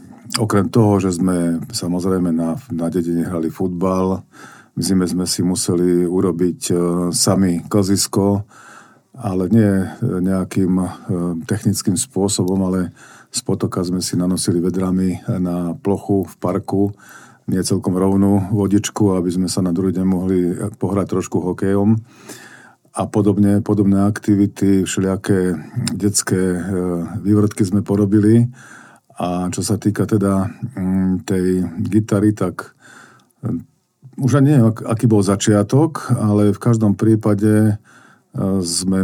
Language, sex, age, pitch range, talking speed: Slovak, male, 50-69, 90-105 Hz, 120 wpm